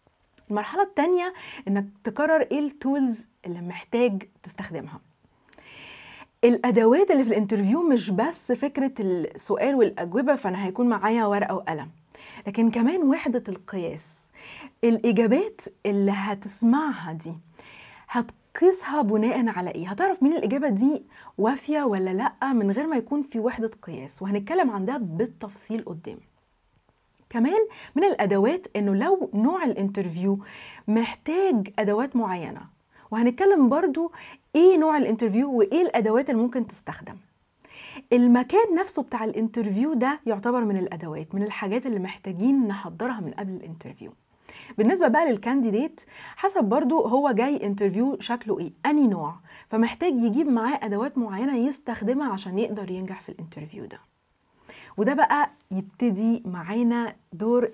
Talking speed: 125 wpm